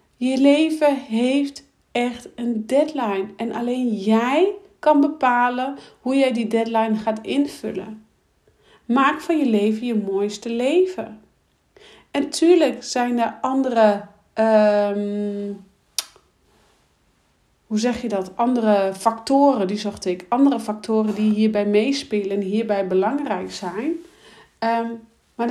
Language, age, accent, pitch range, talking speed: Dutch, 40-59, Dutch, 205-260 Hz, 120 wpm